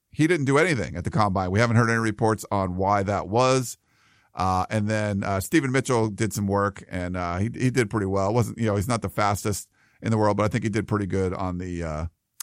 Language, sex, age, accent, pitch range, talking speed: English, male, 50-69, American, 95-120 Hz, 255 wpm